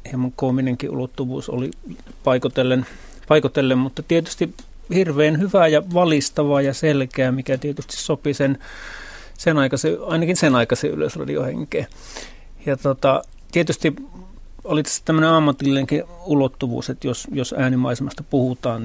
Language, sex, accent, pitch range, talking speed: Finnish, male, native, 125-140 Hz, 115 wpm